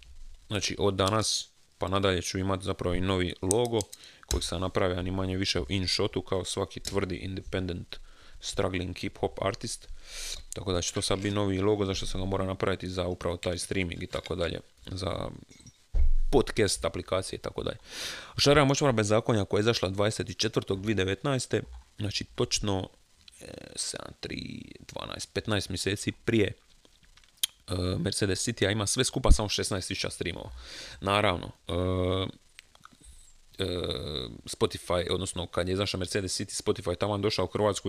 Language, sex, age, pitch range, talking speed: Croatian, male, 30-49, 90-100 Hz, 145 wpm